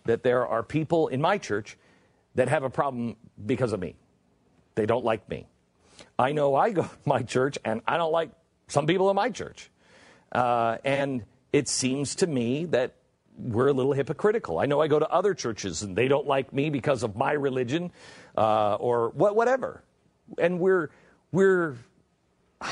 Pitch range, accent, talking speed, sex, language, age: 115-165 Hz, American, 180 wpm, male, English, 50-69